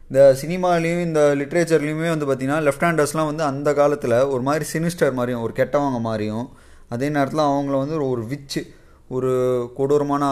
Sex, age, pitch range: male, 20-39, 130-160 Hz